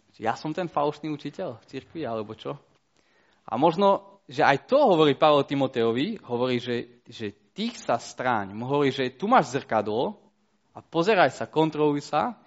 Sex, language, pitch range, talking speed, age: male, Slovak, 115-150 Hz, 160 wpm, 20-39